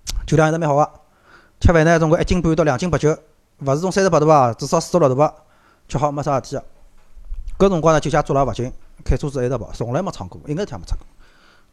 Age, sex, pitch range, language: 30-49, male, 105-155 Hz, Chinese